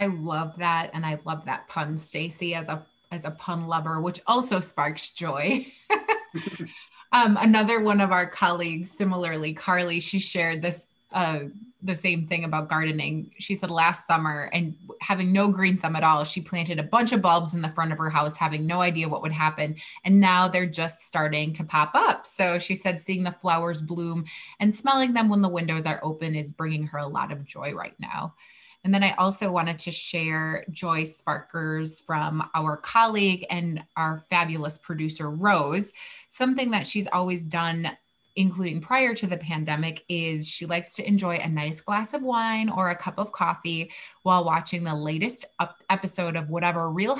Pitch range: 160-190 Hz